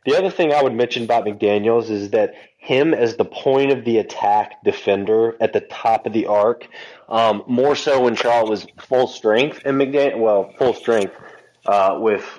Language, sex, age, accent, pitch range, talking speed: English, male, 20-39, American, 100-125 Hz, 190 wpm